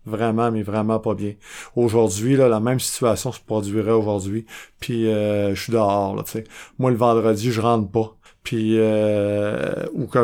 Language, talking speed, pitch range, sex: French, 180 wpm, 110-125 Hz, male